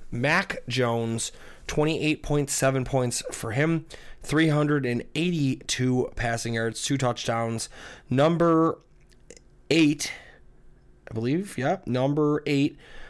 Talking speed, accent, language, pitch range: 85 wpm, American, English, 120-150 Hz